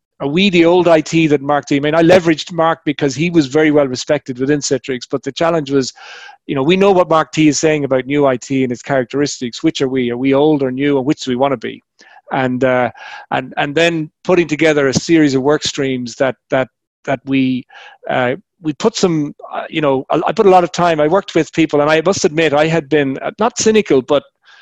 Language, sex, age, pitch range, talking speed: English, male, 40-59, 135-160 Hz, 240 wpm